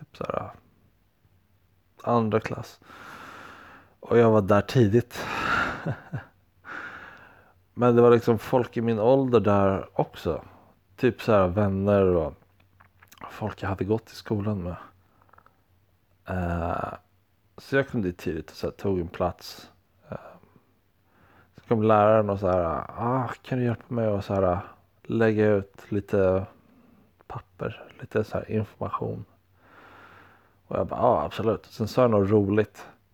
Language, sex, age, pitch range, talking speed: Swedish, male, 30-49, 95-110 Hz, 135 wpm